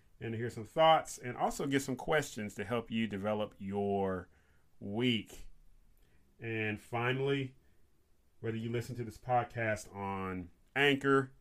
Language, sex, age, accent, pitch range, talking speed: English, male, 30-49, American, 95-125 Hz, 130 wpm